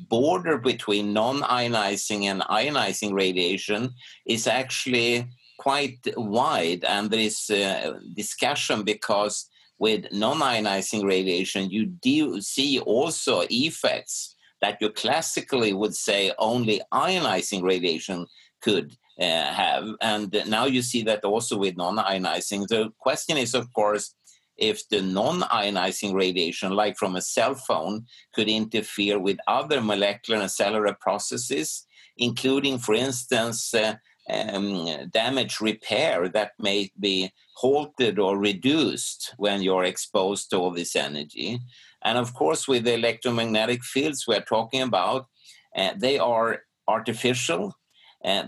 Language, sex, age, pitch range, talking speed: English, male, 50-69, 100-125 Hz, 125 wpm